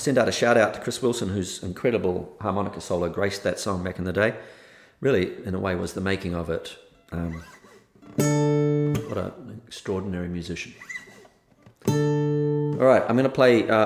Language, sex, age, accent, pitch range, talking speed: English, male, 40-59, British, 85-100 Hz, 175 wpm